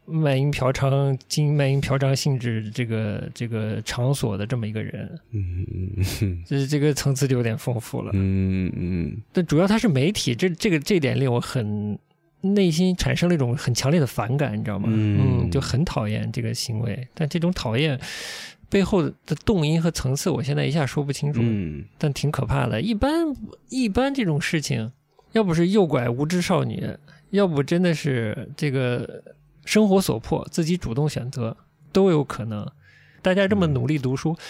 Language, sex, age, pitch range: Chinese, male, 20-39, 125-180 Hz